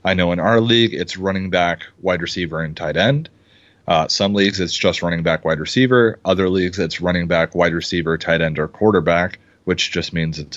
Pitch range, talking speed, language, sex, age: 90-110 Hz, 210 wpm, English, male, 30-49